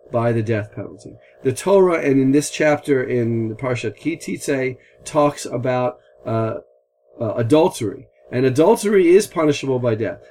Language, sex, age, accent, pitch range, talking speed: English, male, 40-59, American, 115-160 Hz, 145 wpm